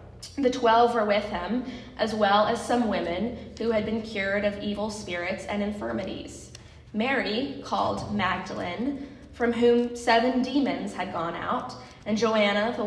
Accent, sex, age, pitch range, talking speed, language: American, female, 10-29, 195-230 Hz, 150 wpm, English